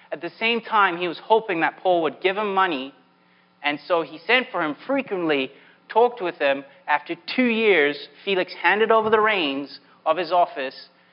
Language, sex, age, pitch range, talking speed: English, male, 30-49, 145-205 Hz, 185 wpm